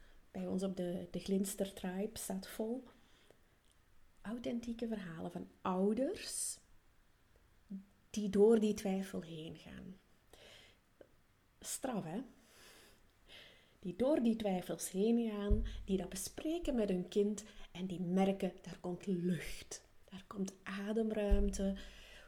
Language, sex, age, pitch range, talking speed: Dutch, female, 30-49, 180-230 Hz, 115 wpm